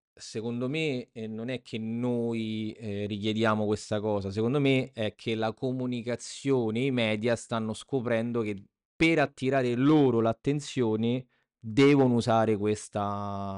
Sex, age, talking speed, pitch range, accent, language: male, 20-39, 130 wpm, 110-130 Hz, native, Italian